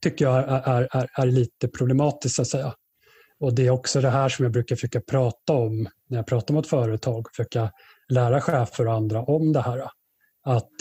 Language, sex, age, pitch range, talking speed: Swedish, male, 30-49, 120-140 Hz, 210 wpm